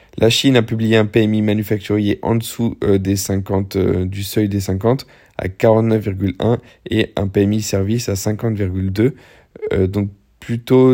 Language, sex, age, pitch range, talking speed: French, male, 20-39, 100-115 Hz, 145 wpm